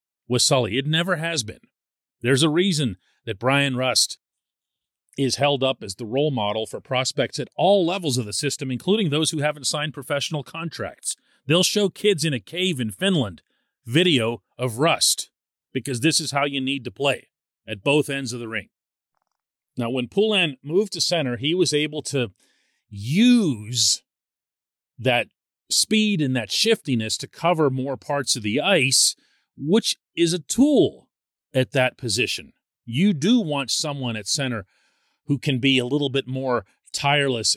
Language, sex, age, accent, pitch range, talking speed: English, male, 40-59, American, 115-155 Hz, 165 wpm